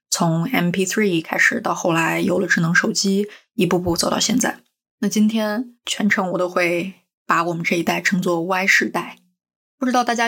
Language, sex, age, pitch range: Chinese, female, 20-39, 175-215 Hz